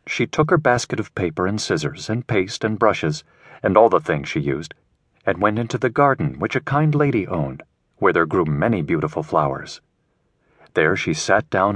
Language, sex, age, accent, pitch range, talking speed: English, male, 40-59, American, 110-150 Hz, 195 wpm